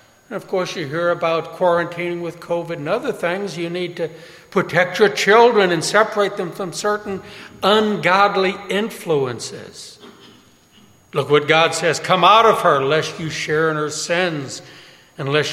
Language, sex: English, male